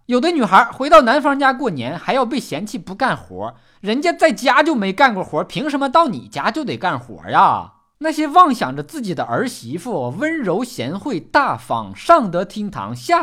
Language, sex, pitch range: Chinese, male, 165-270 Hz